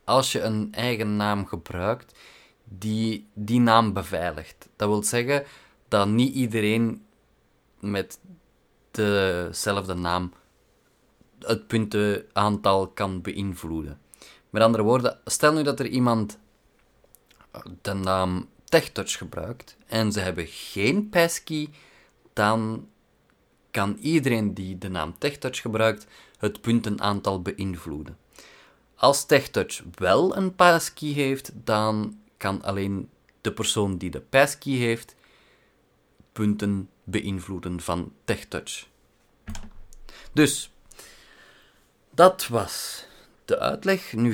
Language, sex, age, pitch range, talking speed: Dutch, male, 30-49, 95-120 Hz, 105 wpm